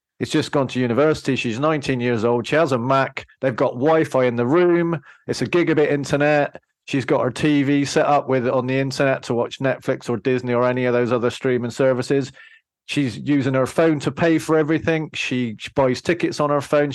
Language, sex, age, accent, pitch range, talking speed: English, male, 40-59, British, 130-155 Hz, 210 wpm